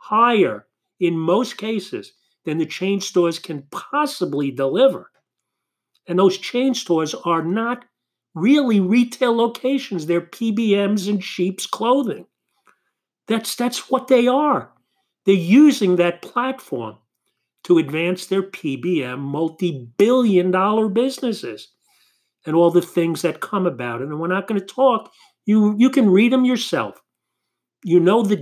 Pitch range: 160-230 Hz